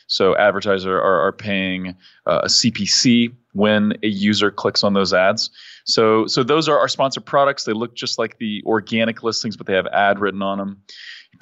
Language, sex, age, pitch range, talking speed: English, male, 30-49, 100-120 Hz, 195 wpm